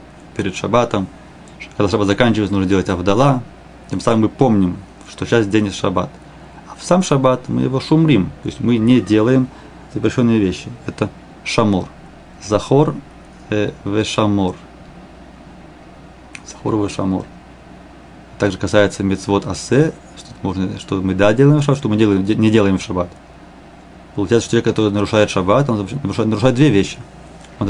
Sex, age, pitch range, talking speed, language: male, 30-49, 100-130 Hz, 140 wpm, Russian